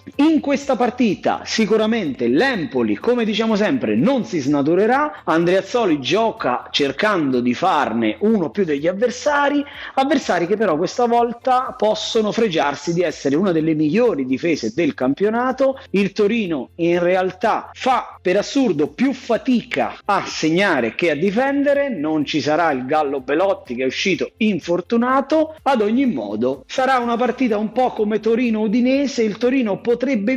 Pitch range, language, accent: 175-260 Hz, Italian, native